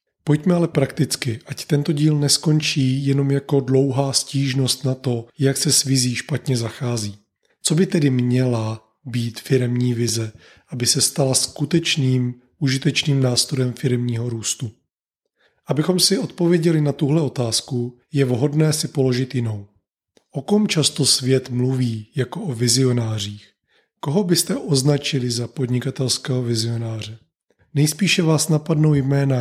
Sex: male